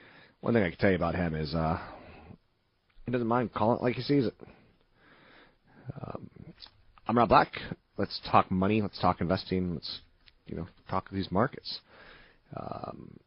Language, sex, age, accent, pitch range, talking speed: English, male, 30-49, American, 85-105 Hz, 165 wpm